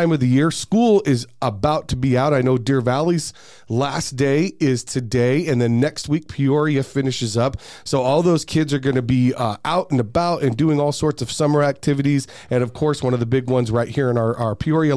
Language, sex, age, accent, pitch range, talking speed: English, male, 40-59, American, 125-160 Hz, 225 wpm